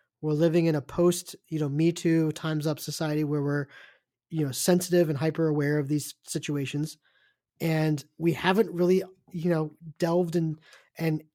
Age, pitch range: 20-39, 145-170 Hz